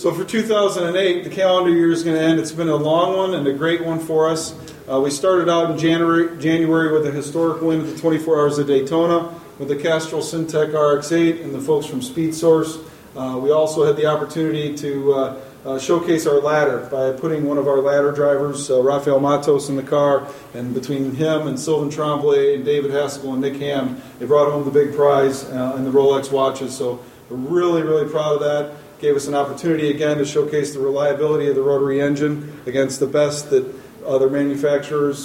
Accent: American